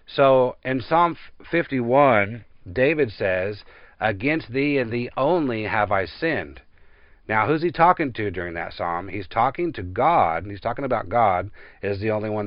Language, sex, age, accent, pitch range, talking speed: English, male, 50-69, American, 105-145 Hz, 170 wpm